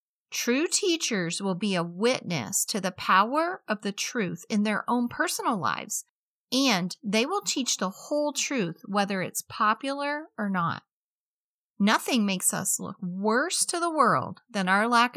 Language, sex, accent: English, female, American